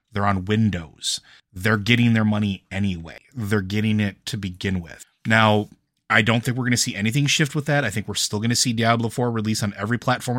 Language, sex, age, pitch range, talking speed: English, male, 30-49, 100-125 Hz, 225 wpm